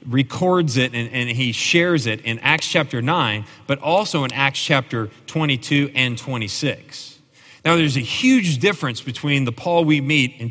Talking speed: 170 wpm